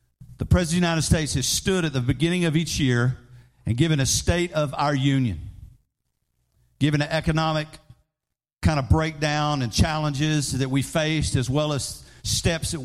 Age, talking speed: 50-69, 175 wpm